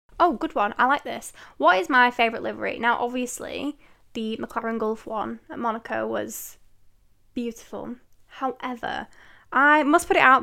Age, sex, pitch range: 10-29, female, 215-275 Hz